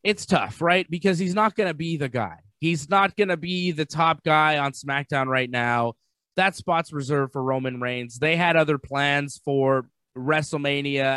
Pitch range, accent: 130-165 Hz, American